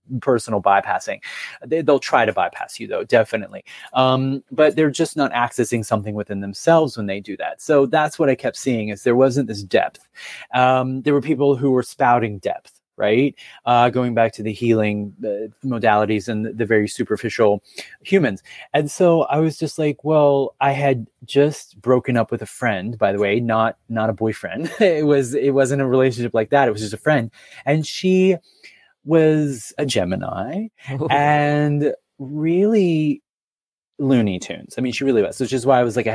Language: English